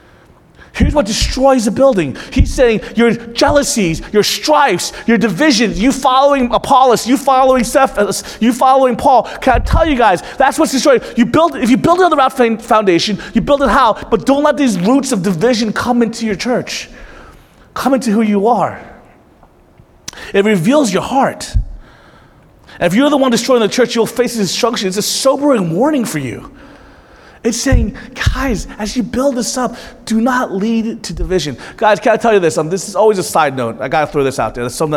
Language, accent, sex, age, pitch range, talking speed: English, American, male, 30-49, 160-240 Hz, 200 wpm